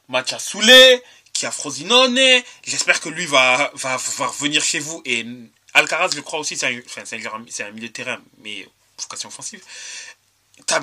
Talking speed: 175 wpm